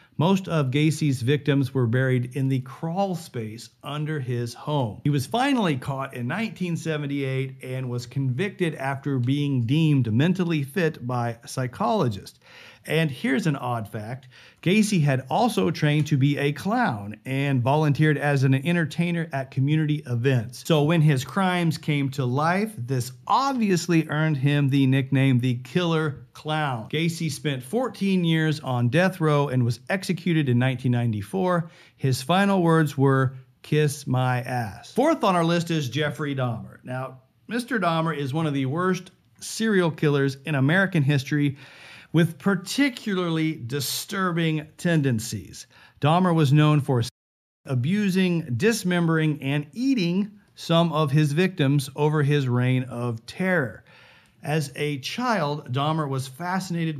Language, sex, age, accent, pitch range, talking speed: English, male, 50-69, American, 130-170 Hz, 140 wpm